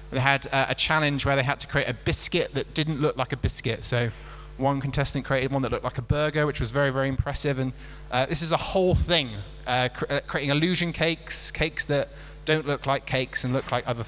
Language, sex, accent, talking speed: English, male, British, 230 wpm